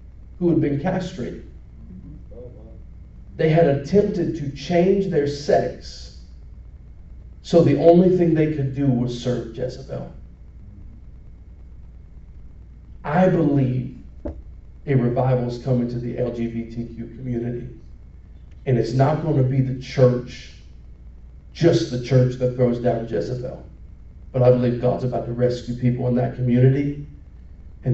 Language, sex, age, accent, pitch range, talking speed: English, male, 50-69, American, 85-135 Hz, 125 wpm